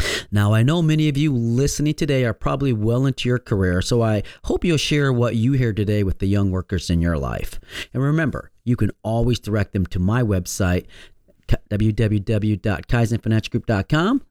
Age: 40-59